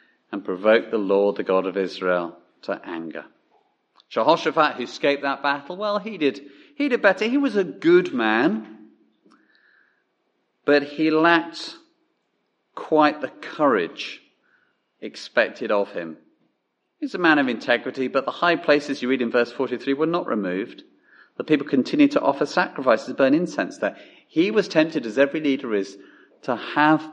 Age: 40-59